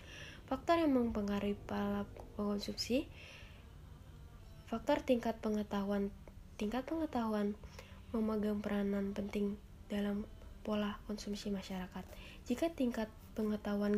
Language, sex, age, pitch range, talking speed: Indonesian, female, 20-39, 200-230 Hz, 85 wpm